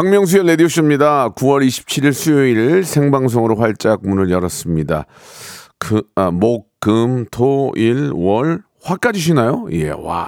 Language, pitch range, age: Korean, 105-150 Hz, 40-59